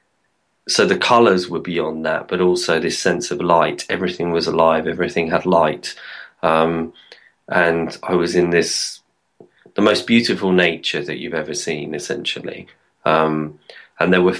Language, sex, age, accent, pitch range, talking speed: English, male, 20-39, British, 80-90 Hz, 155 wpm